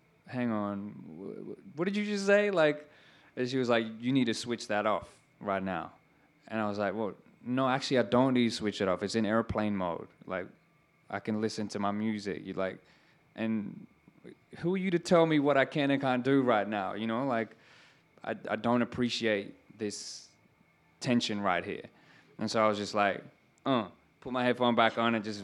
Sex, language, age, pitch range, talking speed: male, English, 20-39, 100-125 Hz, 205 wpm